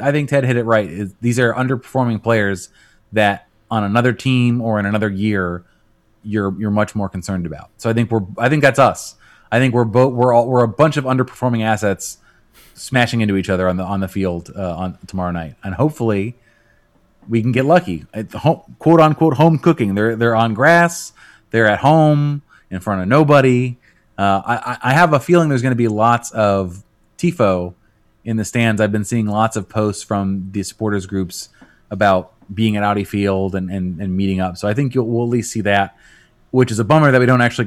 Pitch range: 100-125 Hz